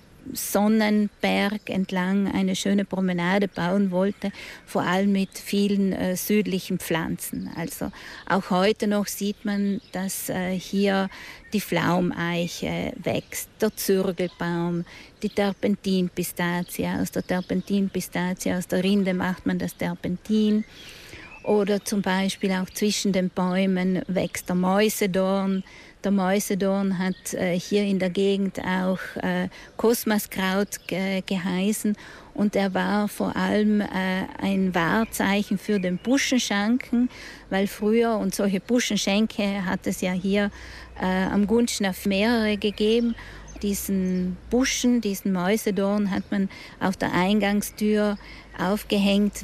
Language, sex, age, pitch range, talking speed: German, female, 50-69, 185-210 Hz, 120 wpm